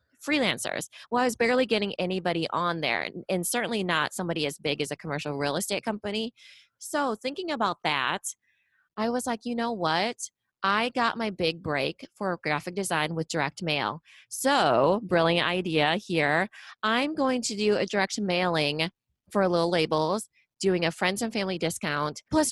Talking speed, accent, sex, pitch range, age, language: 170 wpm, American, female, 165-220 Hz, 20-39, English